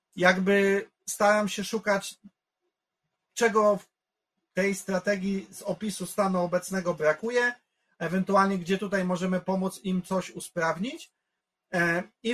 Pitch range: 175-205 Hz